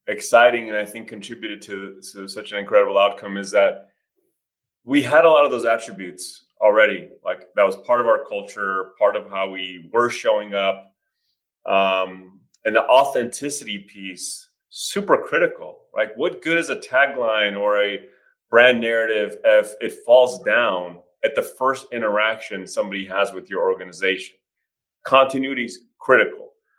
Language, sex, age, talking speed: English, male, 30-49, 150 wpm